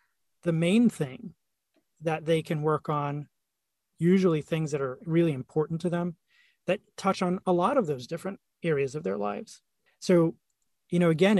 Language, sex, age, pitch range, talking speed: English, male, 30-49, 150-185 Hz, 170 wpm